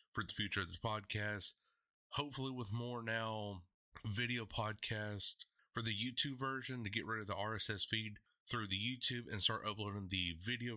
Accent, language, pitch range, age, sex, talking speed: American, English, 105-130 Hz, 30-49, male, 175 wpm